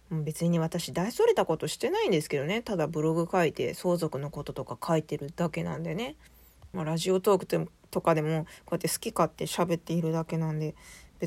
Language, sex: Japanese, female